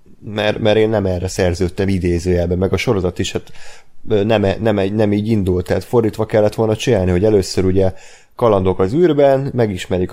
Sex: male